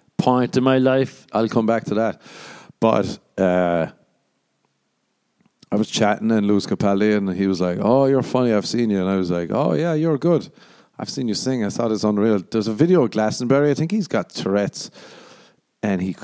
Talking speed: 200 wpm